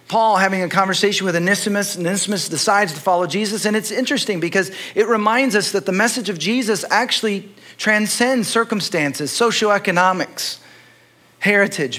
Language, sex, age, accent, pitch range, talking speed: English, male, 40-59, American, 145-195 Hz, 145 wpm